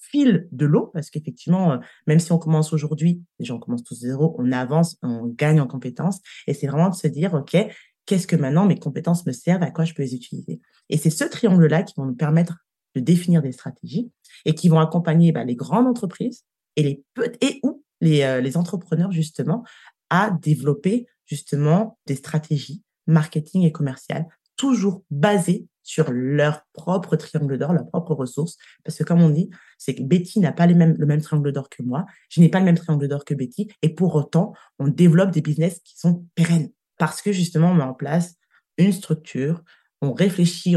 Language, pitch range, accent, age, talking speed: French, 150-180 Hz, French, 20-39, 200 wpm